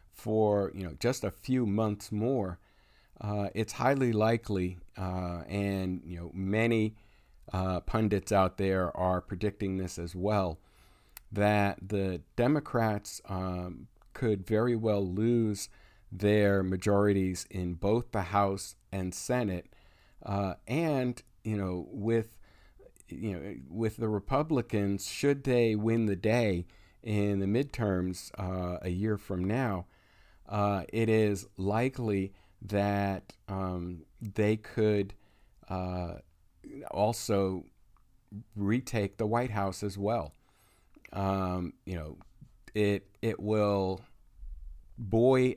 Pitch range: 95-110 Hz